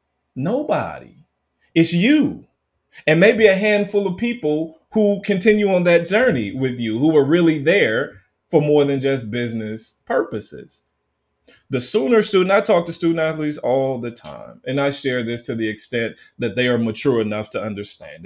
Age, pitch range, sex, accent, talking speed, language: 30-49, 115-170 Hz, male, American, 170 wpm, English